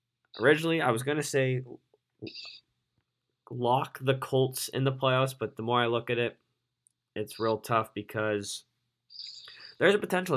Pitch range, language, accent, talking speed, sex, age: 105-125 Hz, English, American, 145 wpm, male, 10-29